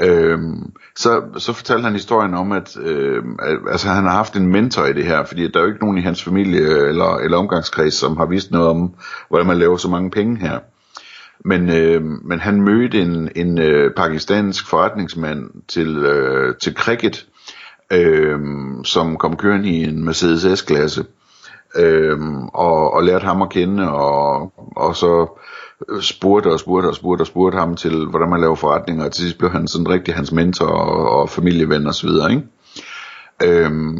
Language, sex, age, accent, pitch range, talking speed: Danish, male, 60-79, native, 80-100 Hz, 170 wpm